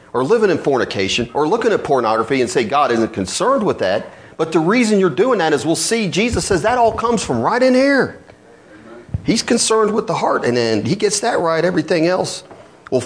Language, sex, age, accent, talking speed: English, male, 40-59, American, 215 wpm